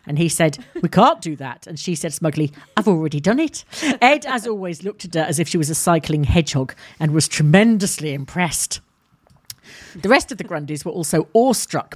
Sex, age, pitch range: female, 40-59, 145-190 Hz